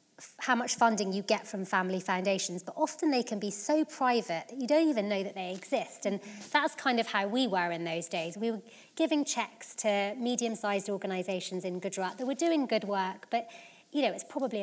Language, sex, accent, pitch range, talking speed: English, female, British, 195-240 Hz, 215 wpm